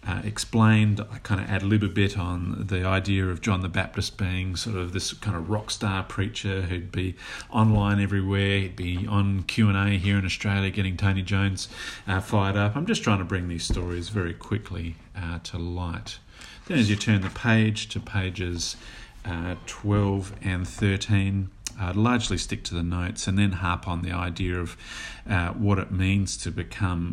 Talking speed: 190 wpm